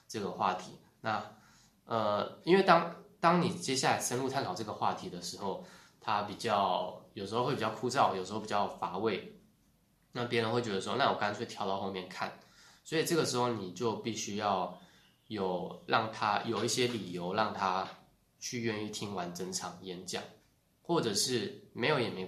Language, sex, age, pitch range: Chinese, male, 20-39, 95-120 Hz